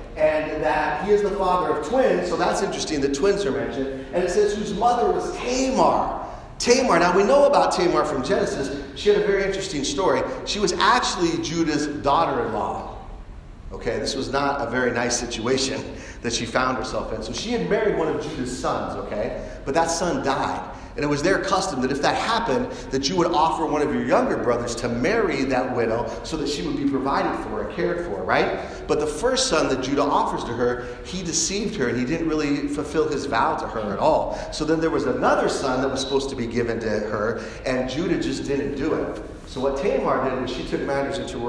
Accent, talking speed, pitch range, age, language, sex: American, 220 wpm, 120-190 Hz, 40-59, English, male